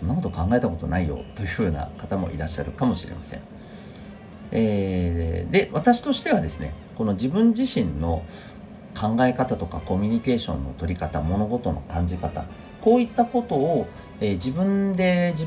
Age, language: 40-59, Japanese